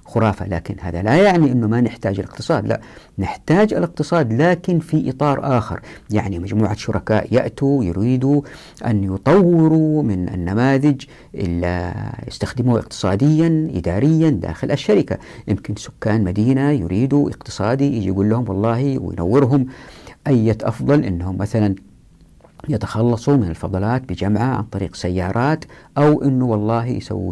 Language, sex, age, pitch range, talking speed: Arabic, female, 50-69, 105-140 Hz, 125 wpm